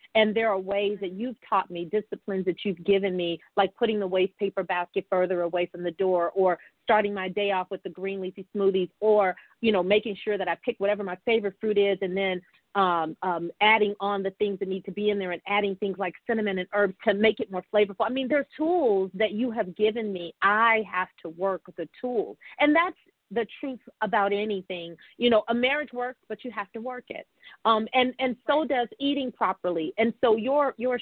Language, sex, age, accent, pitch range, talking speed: English, female, 40-59, American, 190-245 Hz, 225 wpm